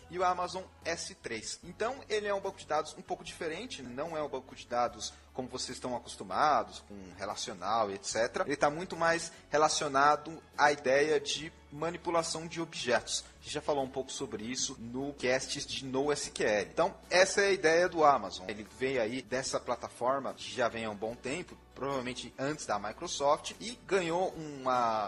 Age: 30-49